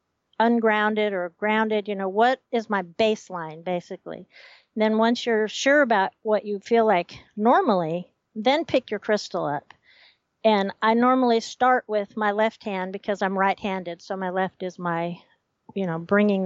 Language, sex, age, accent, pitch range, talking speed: English, female, 50-69, American, 190-230 Hz, 160 wpm